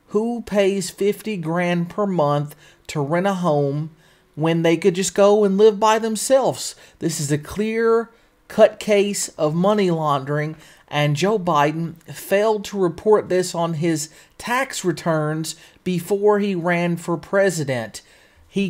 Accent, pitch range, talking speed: American, 155-195 Hz, 145 wpm